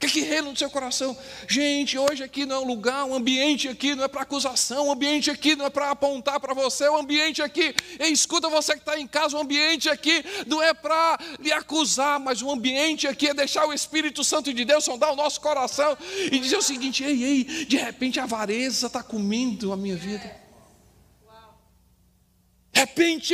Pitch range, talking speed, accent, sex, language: 225-310 Hz, 215 wpm, Brazilian, male, Portuguese